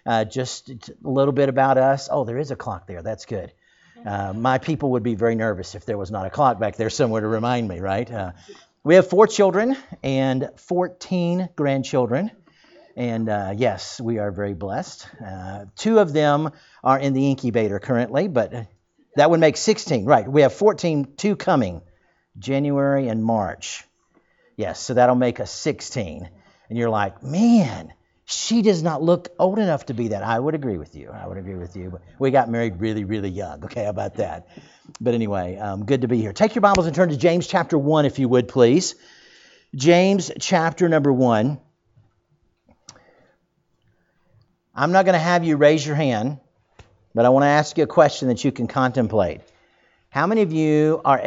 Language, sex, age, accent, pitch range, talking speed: English, male, 50-69, American, 110-160 Hz, 190 wpm